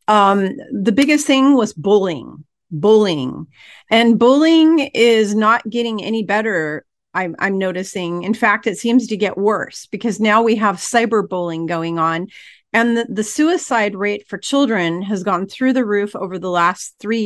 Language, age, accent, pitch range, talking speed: English, 40-59, American, 185-225 Hz, 165 wpm